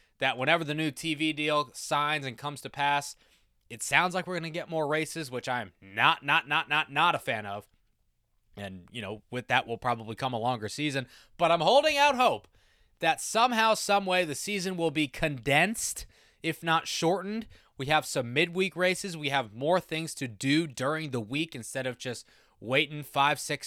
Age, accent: 20-39, American